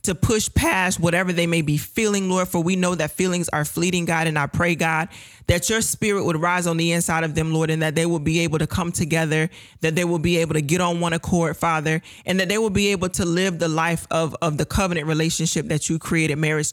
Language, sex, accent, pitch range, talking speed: English, male, American, 155-175 Hz, 255 wpm